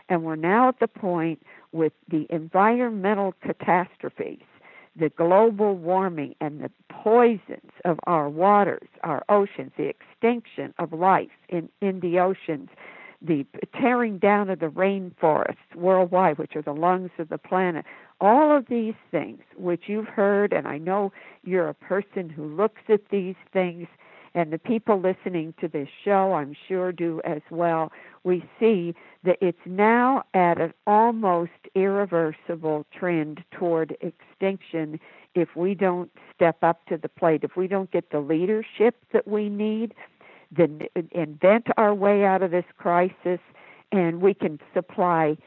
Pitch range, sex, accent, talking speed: 165-205 Hz, female, American, 150 wpm